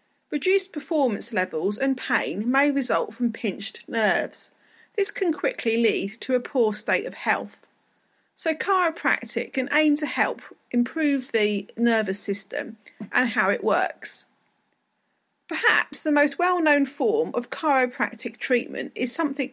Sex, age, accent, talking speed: female, 40-59, British, 135 wpm